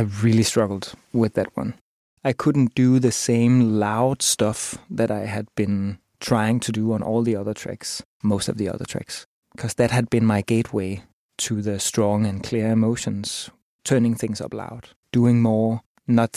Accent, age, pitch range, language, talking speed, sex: Danish, 20-39, 105-120 Hz, English, 180 wpm, male